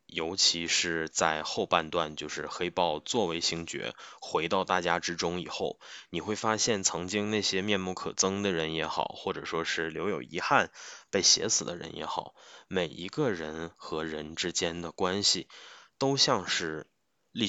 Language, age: Chinese, 20-39